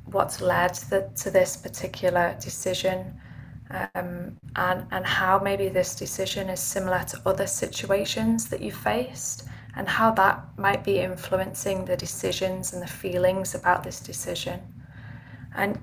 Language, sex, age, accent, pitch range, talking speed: English, female, 20-39, British, 150-195 Hz, 135 wpm